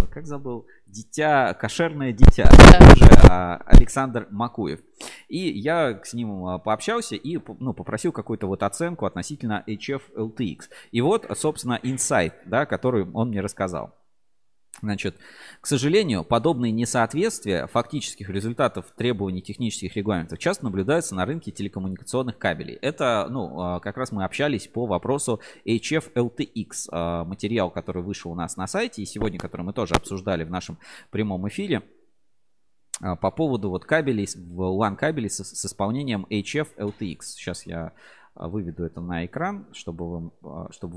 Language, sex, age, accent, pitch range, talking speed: Russian, male, 20-39, native, 95-120 Hz, 135 wpm